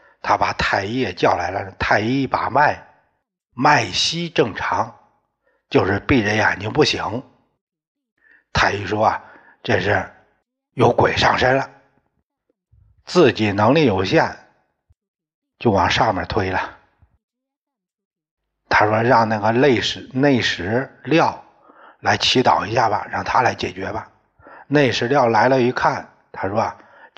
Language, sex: Chinese, male